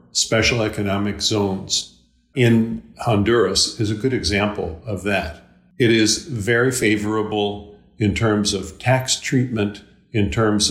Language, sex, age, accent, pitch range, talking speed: English, male, 50-69, American, 100-120 Hz, 125 wpm